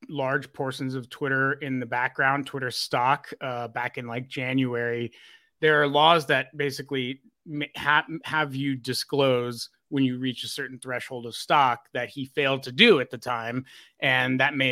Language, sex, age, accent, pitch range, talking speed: English, male, 30-49, American, 125-145 Hz, 170 wpm